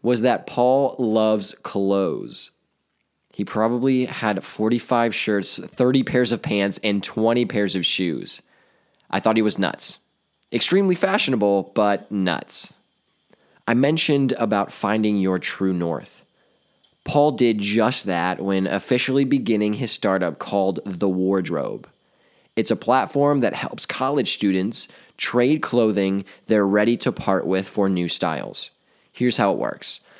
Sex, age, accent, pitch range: male, 20-39, American, 95-125 Hz